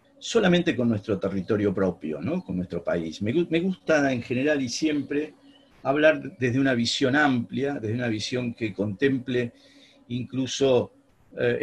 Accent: Argentinian